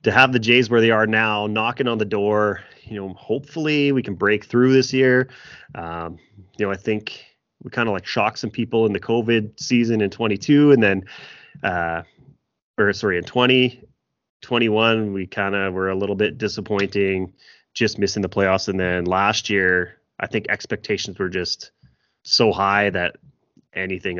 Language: English